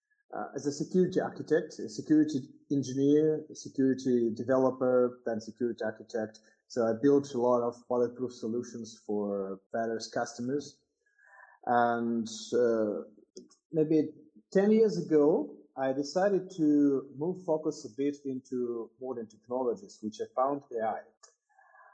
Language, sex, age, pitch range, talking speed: English, male, 30-49, 120-165 Hz, 130 wpm